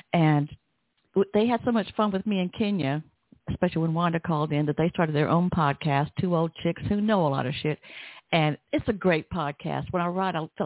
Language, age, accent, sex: English, 60-79, American, female